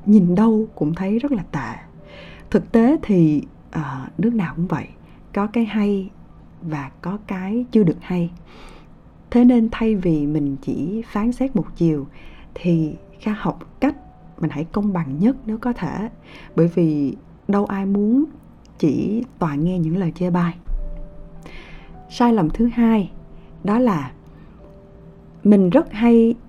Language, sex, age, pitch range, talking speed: Vietnamese, female, 20-39, 175-230 Hz, 150 wpm